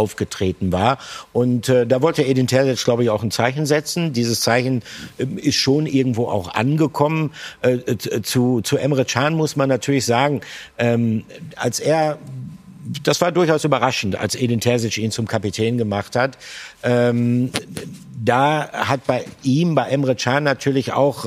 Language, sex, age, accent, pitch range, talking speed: German, male, 50-69, German, 120-140 Hz, 160 wpm